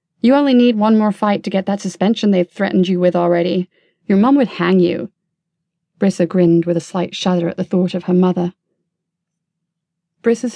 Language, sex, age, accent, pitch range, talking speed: English, female, 30-49, British, 175-200 Hz, 190 wpm